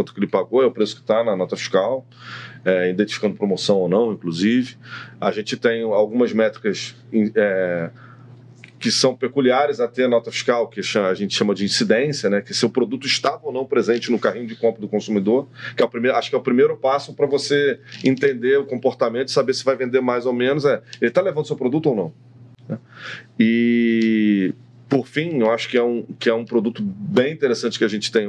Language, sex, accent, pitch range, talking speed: Portuguese, male, Brazilian, 115-135 Hz, 215 wpm